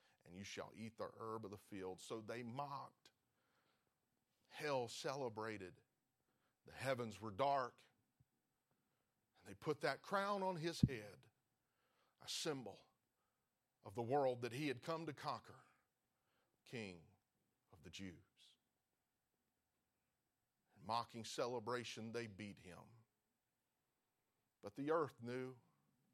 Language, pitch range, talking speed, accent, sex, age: English, 120-170 Hz, 115 wpm, American, male, 40-59